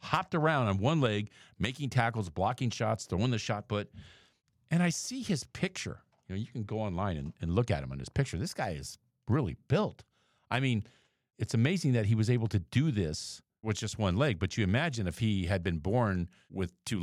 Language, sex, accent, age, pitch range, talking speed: English, male, American, 50-69, 90-120 Hz, 220 wpm